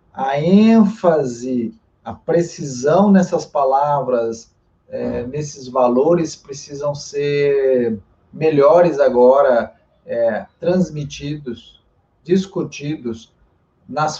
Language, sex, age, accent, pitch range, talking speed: Portuguese, male, 40-59, Brazilian, 135-180 Hz, 70 wpm